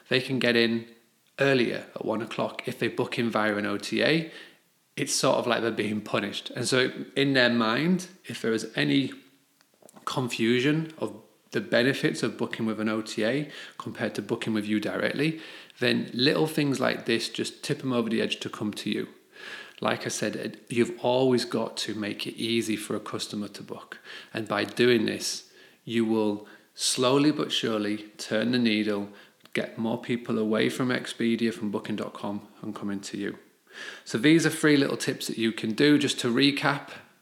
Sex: male